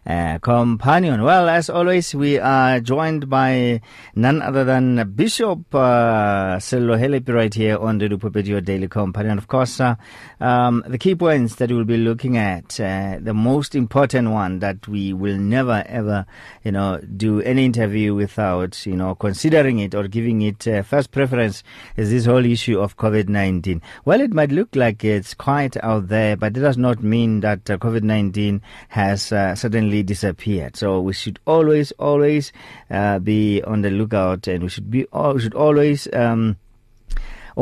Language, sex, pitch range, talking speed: English, male, 100-125 Hz, 170 wpm